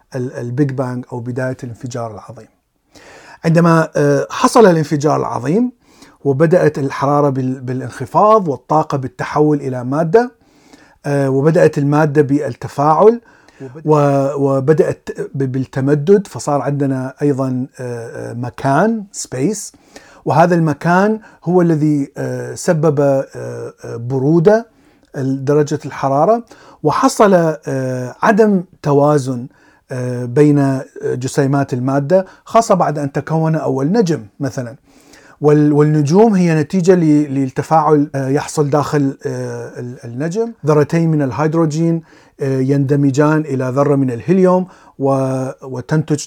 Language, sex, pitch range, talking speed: Arabic, male, 135-160 Hz, 80 wpm